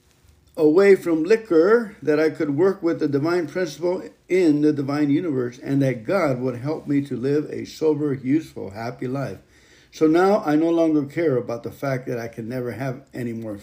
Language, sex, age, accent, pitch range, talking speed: English, male, 50-69, American, 130-160 Hz, 195 wpm